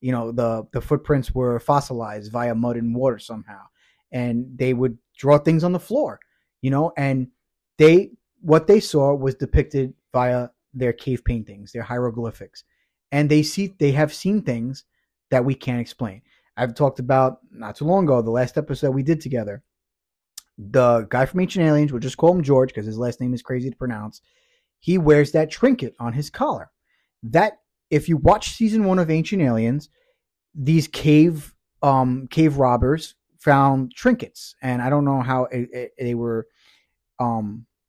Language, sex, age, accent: English, male, 30-49, American